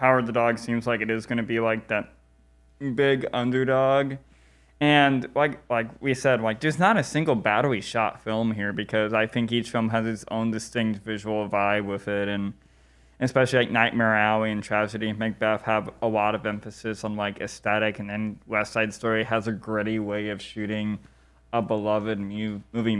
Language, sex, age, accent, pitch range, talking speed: English, male, 20-39, American, 100-115 Hz, 190 wpm